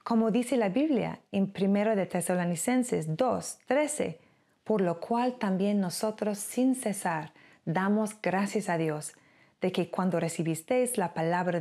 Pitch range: 170-230 Hz